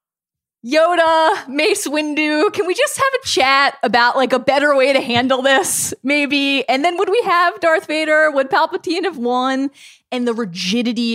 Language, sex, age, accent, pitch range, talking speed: English, female, 20-39, American, 175-260 Hz, 170 wpm